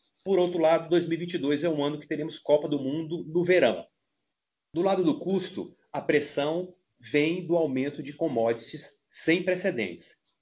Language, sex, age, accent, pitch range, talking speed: Portuguese, male, 40-59, Brazilian, 130-170 Hz, 155 wpm